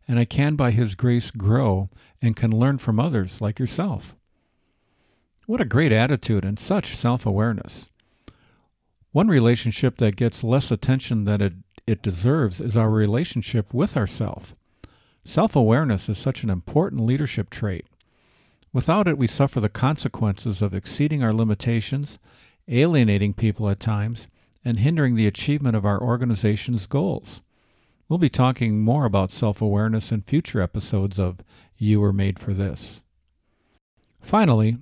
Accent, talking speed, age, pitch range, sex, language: American, 140 wpm, 50-69, 105-130 Hz, male, English